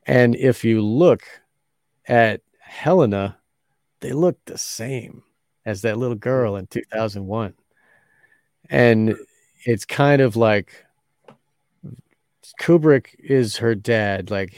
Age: 40-59